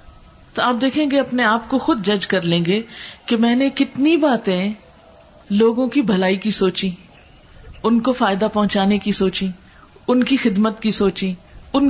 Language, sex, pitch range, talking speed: Urdu, female, 190-245 Hz, 170 wpm